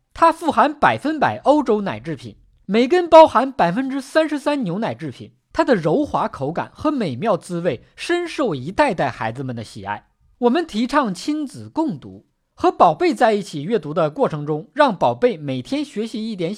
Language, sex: Chinese, male